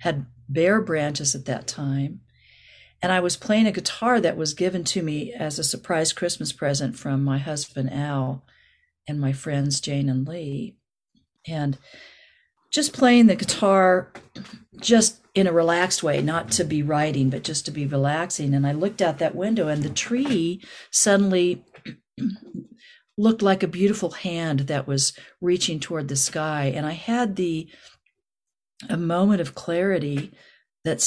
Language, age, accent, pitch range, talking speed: English, 50-69, American, 145-195 Hz, 155 wpm